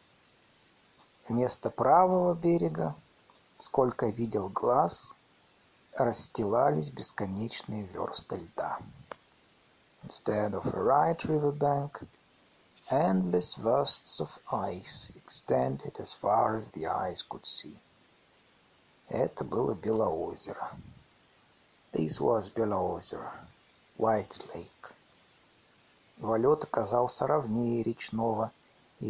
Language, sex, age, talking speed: Russian, male, 50-69, 50 wpm